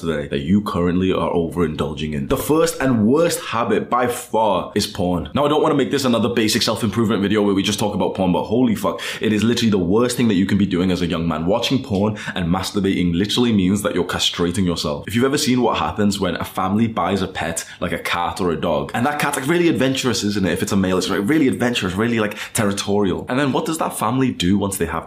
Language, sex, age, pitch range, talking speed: English, male, 20-39, 90-115 Hz, 260 wpm